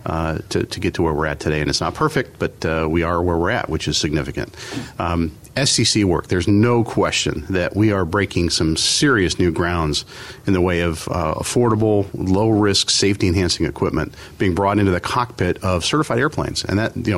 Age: 50-69